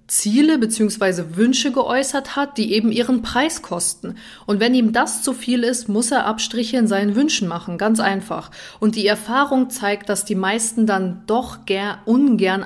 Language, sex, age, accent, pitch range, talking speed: German, female, 30-49, German, 185-230 Hz, 175 wpm